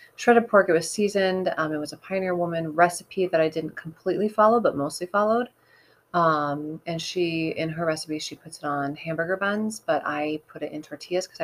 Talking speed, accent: 205 wpm, American